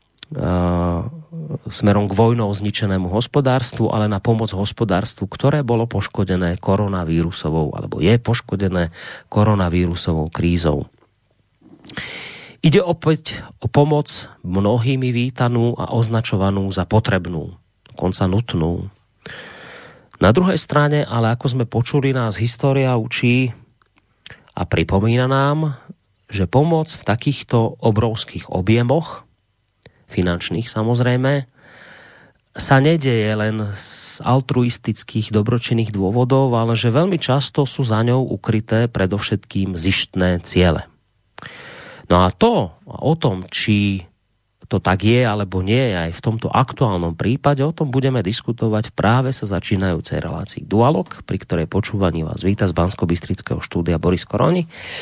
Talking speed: 115 wpm